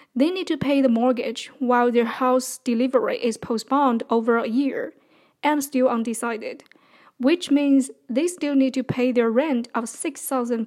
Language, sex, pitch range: English, female, 245-285 Hz